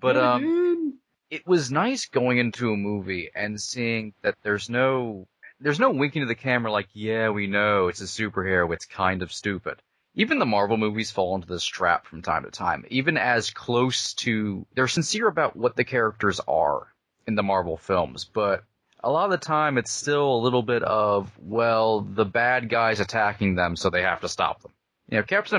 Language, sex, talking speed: English, male, 200 wpm